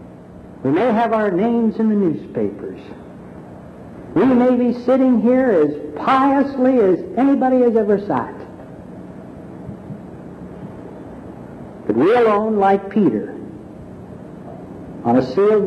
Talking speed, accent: 110 wpm, American